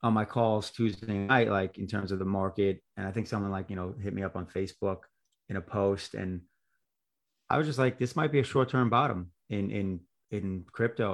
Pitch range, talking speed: 90-110 Hz, 220 wpm